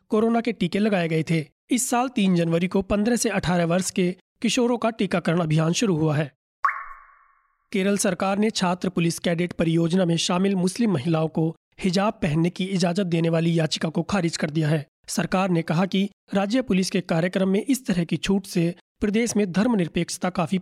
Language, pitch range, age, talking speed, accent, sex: Hindi, 170-205 Hz, 30-49, 190 wpm, native, male